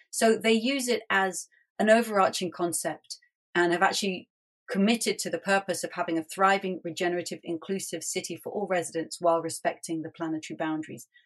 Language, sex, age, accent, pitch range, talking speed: English, female, 40-59, British, 165-210 Hz, 160 wpm